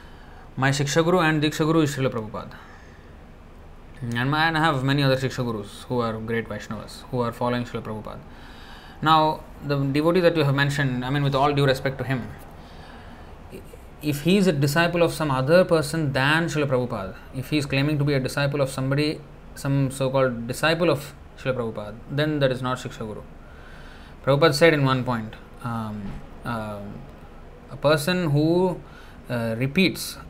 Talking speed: 165 wpm